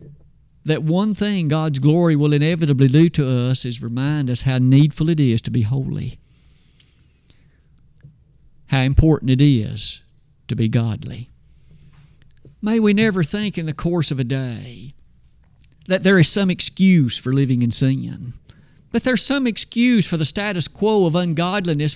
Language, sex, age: English, male, 50-69